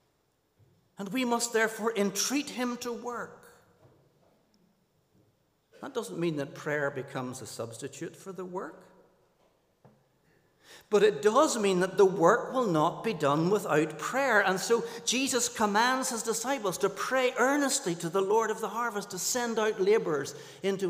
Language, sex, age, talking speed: English, male, 60-79, 150 wpm